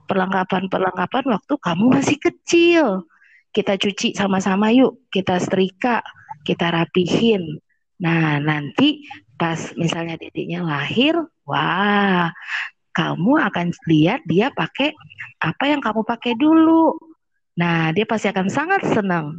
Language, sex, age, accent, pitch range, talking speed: Indonesian, female, 20-39, native, 175-255 Hz, 110 wpm